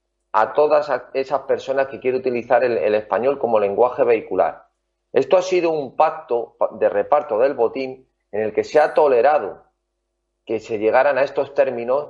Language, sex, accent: Spanish, male, Spanish